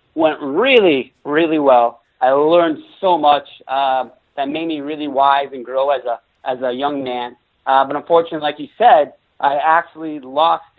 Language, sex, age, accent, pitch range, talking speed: English, male, 30-49, American, 135-165 Hz, 170 wpm